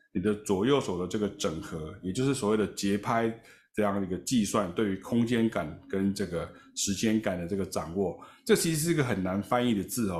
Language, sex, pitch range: Chinese, male, 100-120 Hz